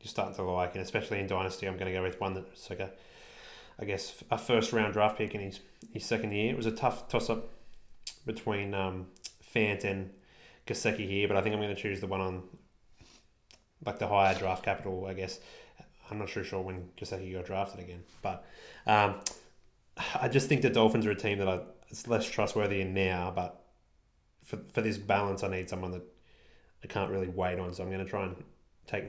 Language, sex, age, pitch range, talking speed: English, male, 20-39, 95-105 Hz, 215 wpm